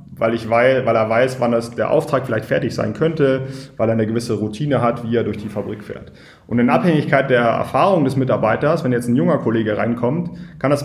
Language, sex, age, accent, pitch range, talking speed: German, male, 30-49, German, 110-135 Hz, 225 wpm